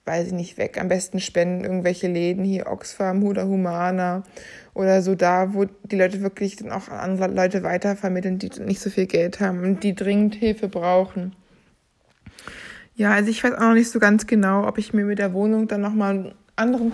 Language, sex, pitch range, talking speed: German, female, 200-230 Hz, 190 wpm